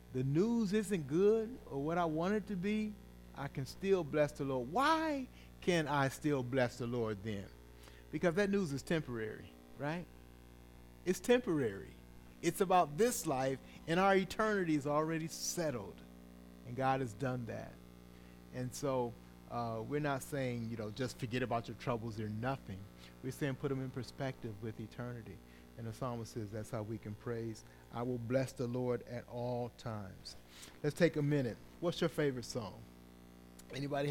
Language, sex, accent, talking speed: English, male, American, 170 wpm